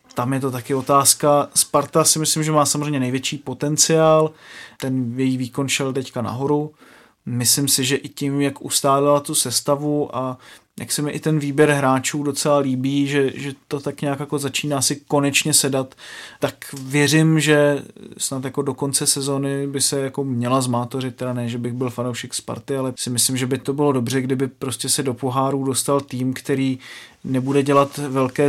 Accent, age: native, 30-49